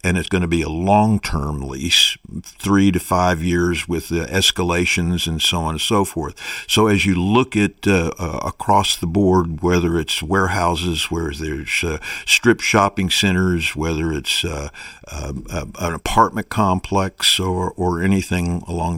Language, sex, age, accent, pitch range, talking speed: English, male, 50-69, American, 85-95 Hz, 170 wpm